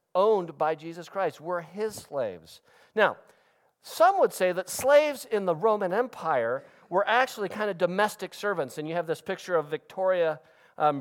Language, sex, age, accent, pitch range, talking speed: English, male, 50-69, American, 145-195 Hz, 170 wpm